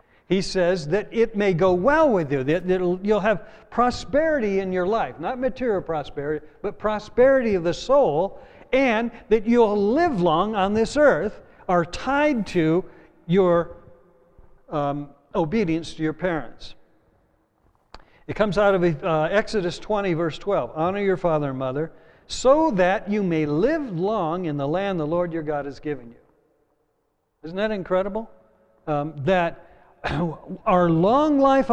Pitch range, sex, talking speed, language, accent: 155-210 Hz, male, 150 wpm, English, American